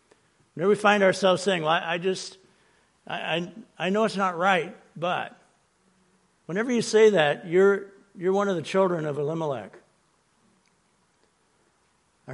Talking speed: 140 wpm